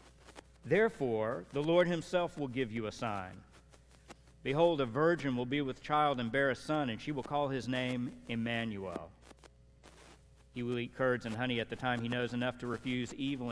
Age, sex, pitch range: 50-69, male, 80-130 Hz